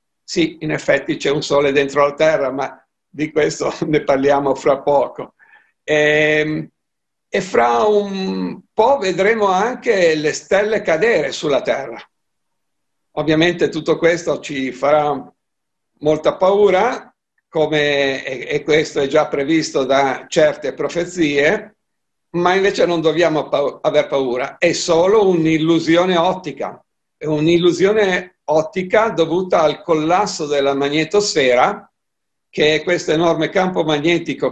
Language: Italian